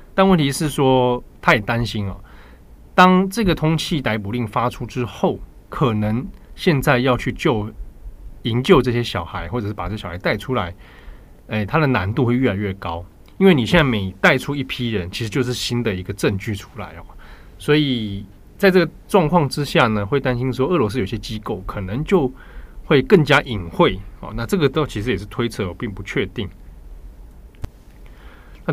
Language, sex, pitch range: Chinese, male, 100-150 Hz